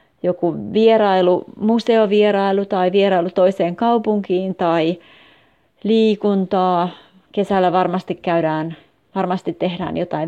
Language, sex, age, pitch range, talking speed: Finnish, female, 30-49, 170-210 Hz, 90 wpm